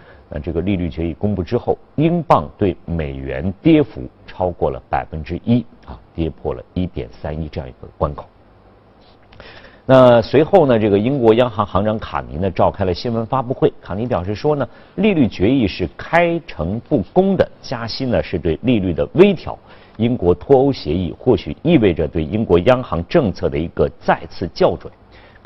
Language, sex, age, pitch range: Chinese, male, 50-69, 80-115 Hz